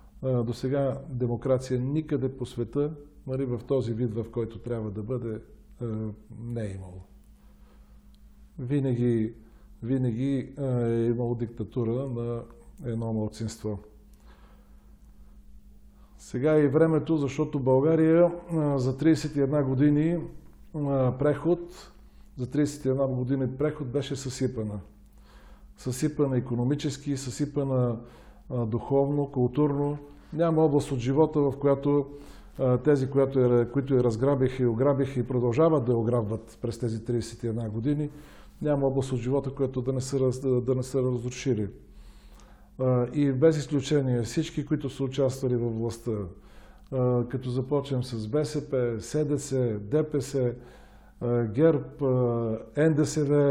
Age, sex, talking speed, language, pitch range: 50-69, male, 110 wpm, Bulgarian, 120-145 Hz